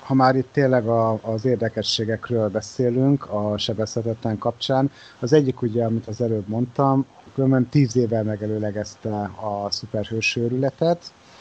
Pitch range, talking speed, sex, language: 110-135 Hz, 120 wpm, male, Hungarian